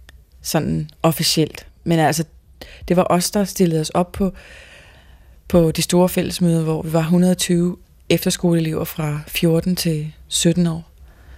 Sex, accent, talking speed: female, native, 135 wpm